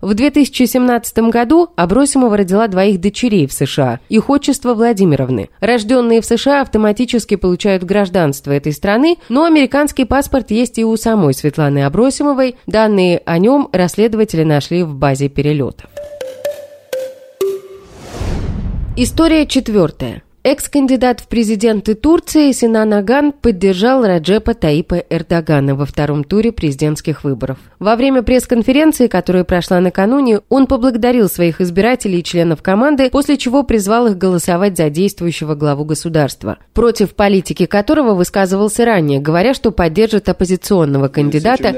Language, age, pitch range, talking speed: Russian, 20-39, 155-250 Hz, 125 wpm